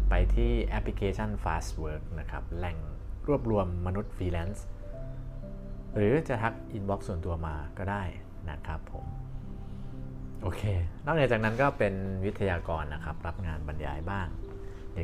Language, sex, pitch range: Thai, male, 85-105 Hz